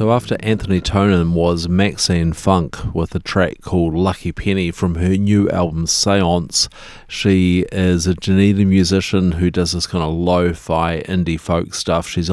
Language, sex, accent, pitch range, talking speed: English, male, Australian, 85-95 Hz, 160 wpm